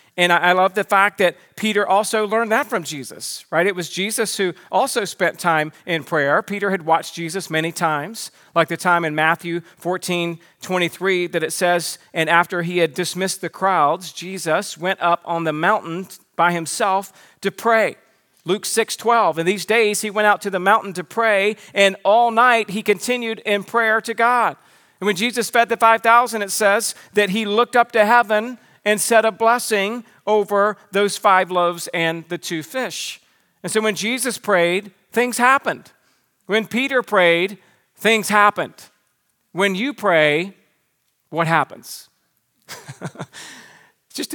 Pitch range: 175-220 Hz